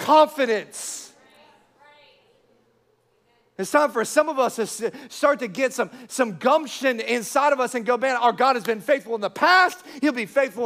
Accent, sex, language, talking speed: American, male, English, 175 wpm